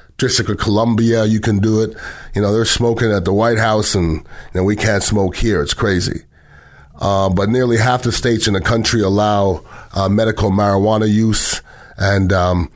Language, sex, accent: English, male, American